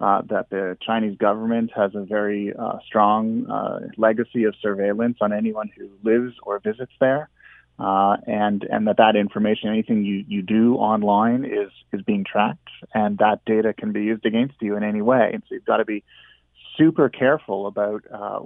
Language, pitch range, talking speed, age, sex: English, 105-120 Hz, 185 wpm, 30-49, male